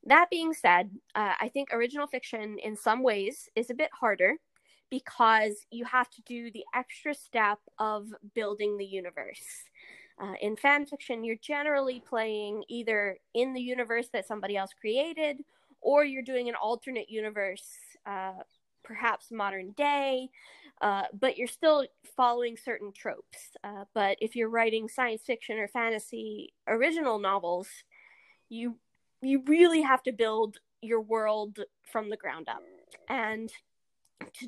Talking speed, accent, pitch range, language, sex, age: 145 wpm, American, 215-260 Hz, English, female, 20-39